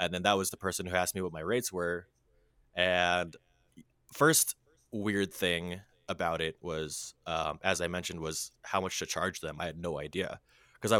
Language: English